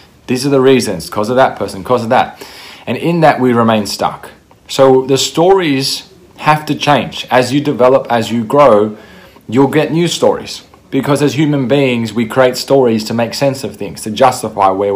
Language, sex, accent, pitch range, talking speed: English, male, Australian, 115-140 Hz, 195 wpm